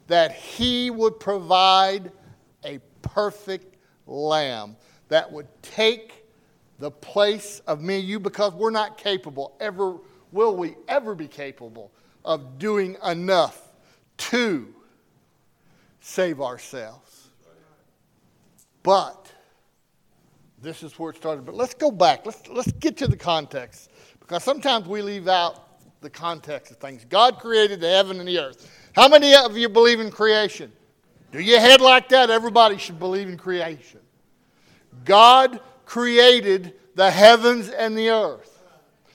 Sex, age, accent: male, 50-69, American